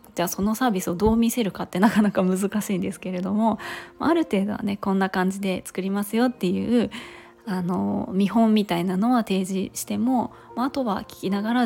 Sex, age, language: female, 20-39, Japanese